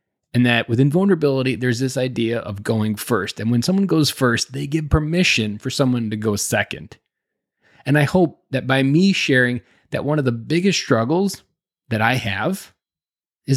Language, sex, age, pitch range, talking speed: English, male, 20-39, 115-150 Hz, 175 wpm